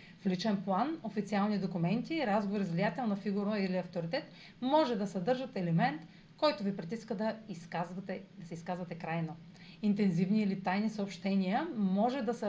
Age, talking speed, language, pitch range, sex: 40-59, 145 wpm, Bulgarian, 180-235 Hz, female